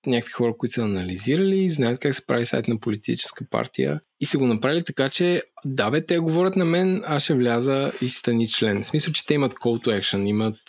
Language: Bulgarian